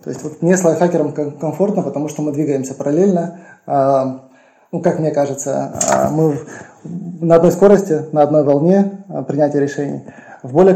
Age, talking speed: 20-39, 150 wpm